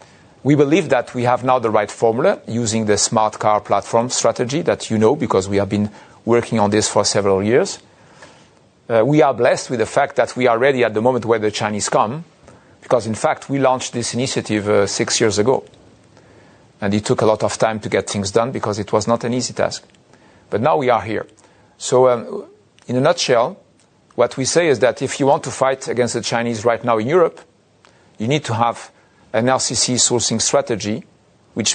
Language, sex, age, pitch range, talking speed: English, male, 40-59, 110-130 Hz, 210 wpm